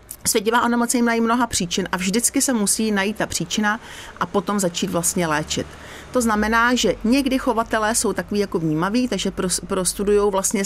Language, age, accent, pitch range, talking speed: Czech, 40-59, native, 175-210 Hz, 165 wpm